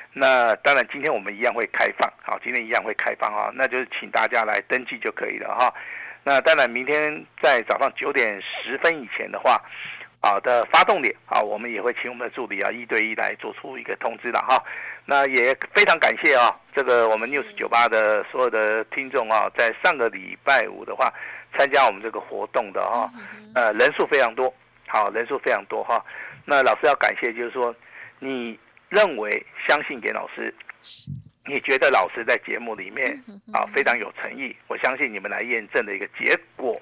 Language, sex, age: Chinese, male, 50-69